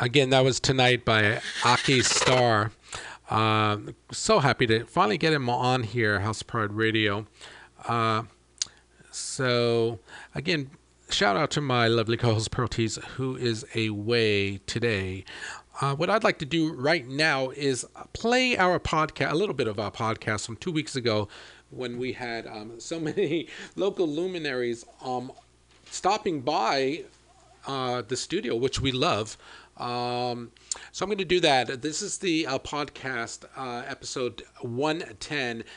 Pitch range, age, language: 115-150 Hz, 40-59, English